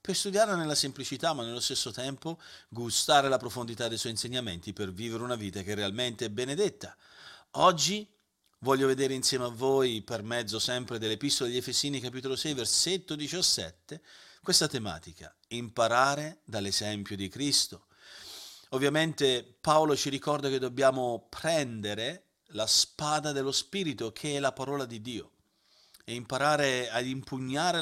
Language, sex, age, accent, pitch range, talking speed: Italian, male, 40-59, native, 110-150 Hz, 140 wpm